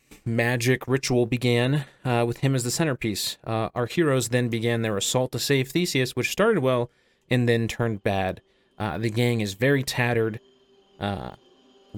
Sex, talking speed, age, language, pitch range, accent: male, 165 wpm, 30-49, English, 100-125 Hz, American